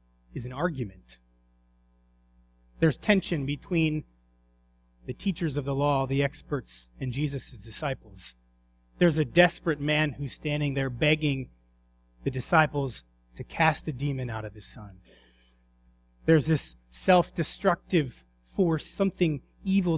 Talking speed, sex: 120 wpm, male